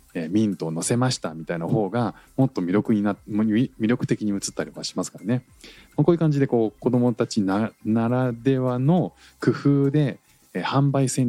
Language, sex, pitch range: Japanese, male, 95-135 Hz